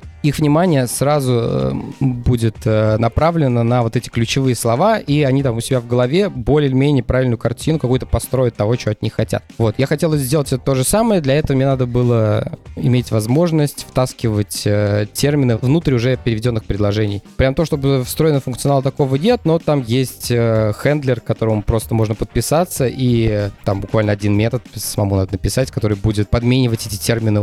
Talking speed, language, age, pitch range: 165 wpm, Russian, 20-39, 115-140 Hz